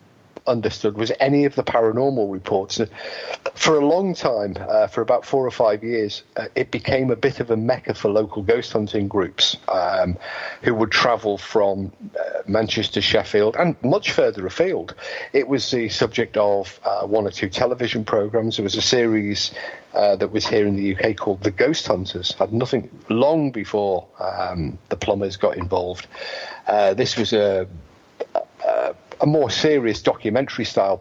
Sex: male